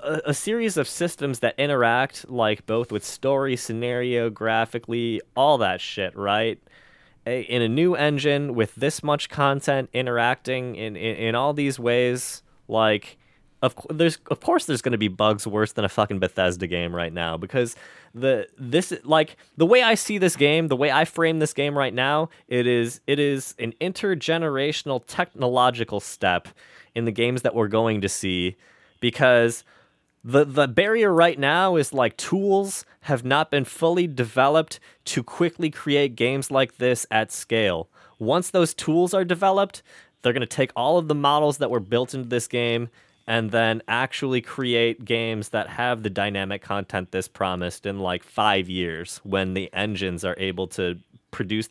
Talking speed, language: 170 wpm, English